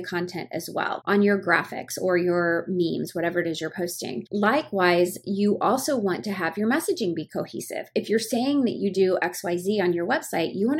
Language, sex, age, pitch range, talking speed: English, female, 30-49, 170-200 Hz, 210 wpm